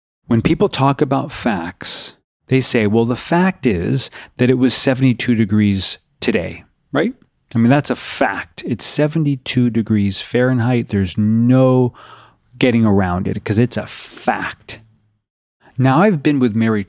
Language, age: English, 30-49